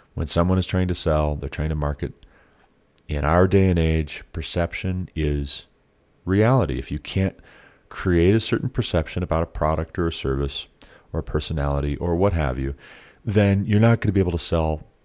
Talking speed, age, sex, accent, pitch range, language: 185 wpm, 30-49, male, American, 70-90 Hz, English